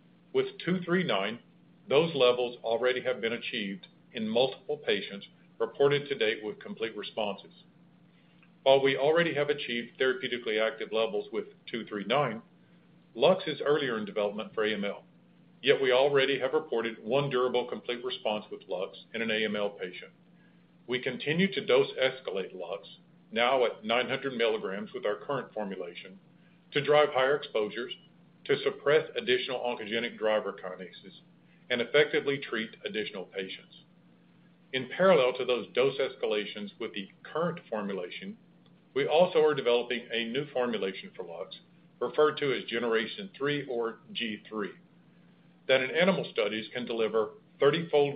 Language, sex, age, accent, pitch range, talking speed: English, male, 50-69, American, 120-185 Hz, 140 wpm